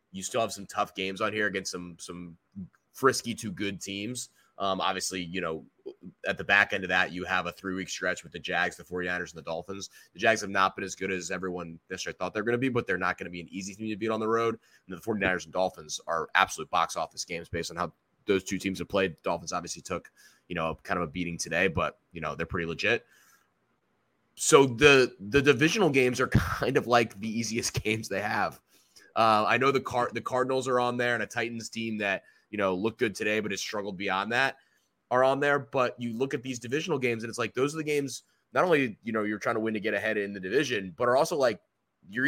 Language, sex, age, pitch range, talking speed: English, male, 20-39, 95-130 Hz, 255 wpm